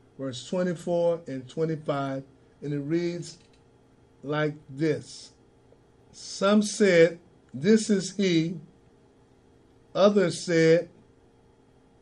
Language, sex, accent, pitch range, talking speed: English, male, American, 120-185 Hz, 80 wpm